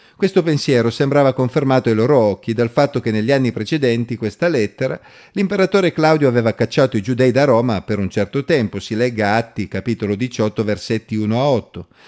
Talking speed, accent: 180 wpm, native